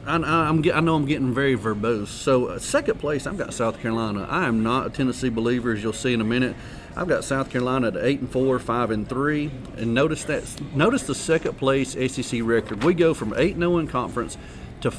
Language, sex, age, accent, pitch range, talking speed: English, male, 30-49, American, 115-145 Hz, 210 wpm